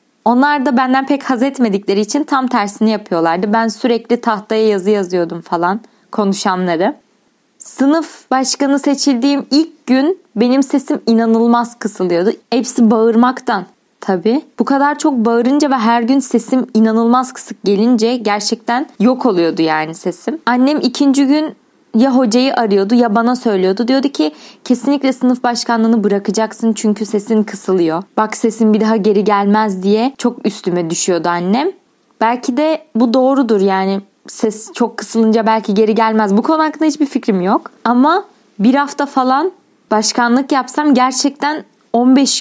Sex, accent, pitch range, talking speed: female, native, 210-270 Hz, 140 wpm